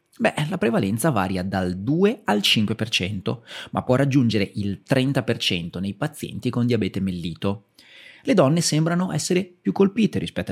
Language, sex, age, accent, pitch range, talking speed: Italian, male, 30-49, native, 100-160 Hz, 145 wpm